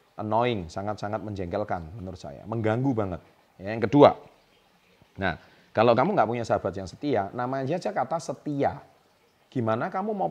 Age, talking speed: 30-49, 140 wpm